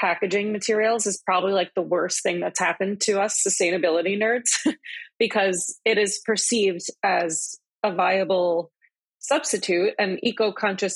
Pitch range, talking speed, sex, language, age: 185-230 Hz, 135 wpm, female, English, 30-49